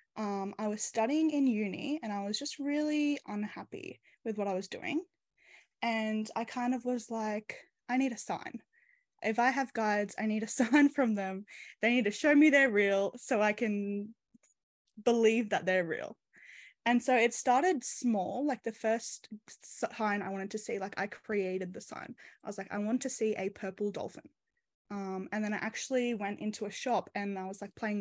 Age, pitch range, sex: 10-29, 205-255 Hz, female